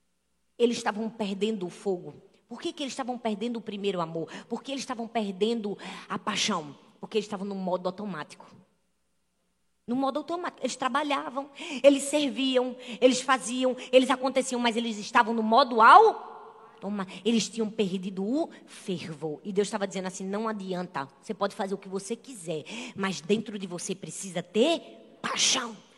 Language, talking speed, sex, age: Portuguese, 160 wpm, female, 20-39